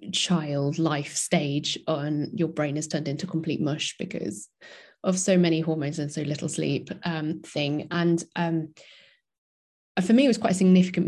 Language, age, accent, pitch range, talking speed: English, 20-39, British, 155-180 Hz, 170 wpm